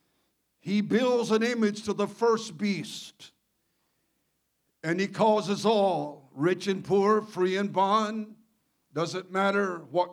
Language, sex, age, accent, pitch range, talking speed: English, male, 60-79, American, 175-215 Hz, 125 wpm